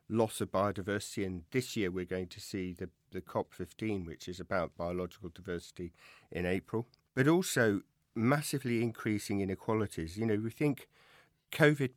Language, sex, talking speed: English, male, 150 wpm